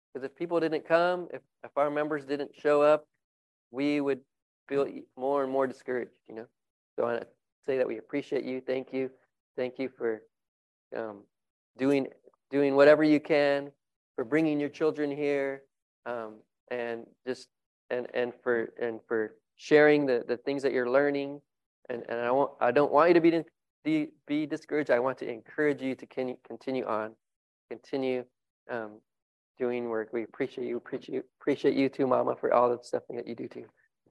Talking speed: 180 wpm